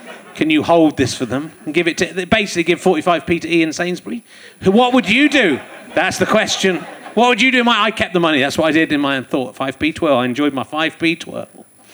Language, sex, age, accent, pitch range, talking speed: English, male, 40-59, British, 175-260 Hz, 230 wpm